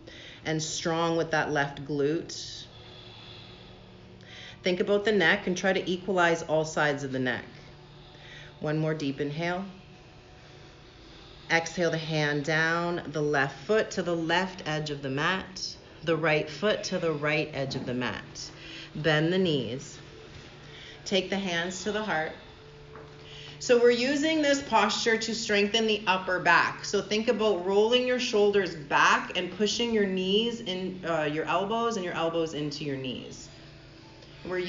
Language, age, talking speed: English, 40-59, 150 wpm